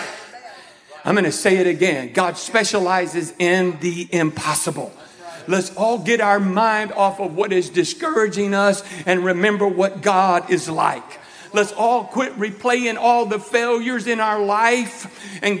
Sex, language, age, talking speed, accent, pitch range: male, English, 50-69, 150 wpm, American, 205-255 Hz